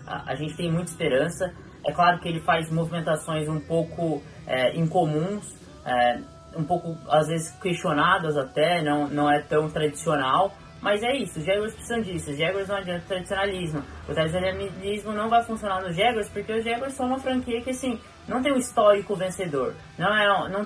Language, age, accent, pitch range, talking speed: Portuguese, 10-29, Brazilian, 155-200 Hz, 185 wpm